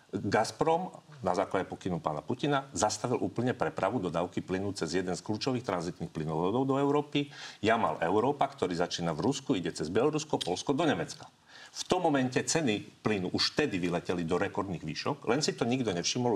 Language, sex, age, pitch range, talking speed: Slovak, male, 40-59, 90-135 Hz, 170 wpm